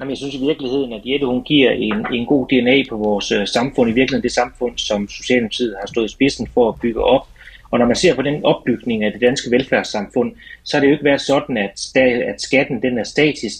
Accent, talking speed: native, 240 wpm